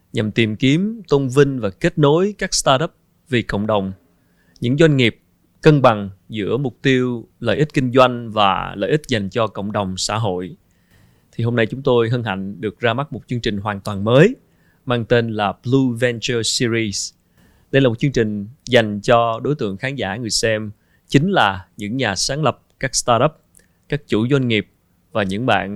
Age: 20-39